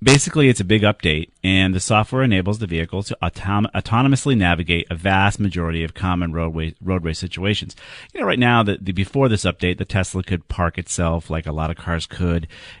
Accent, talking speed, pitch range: American, 200 wpm, 85-100 Hz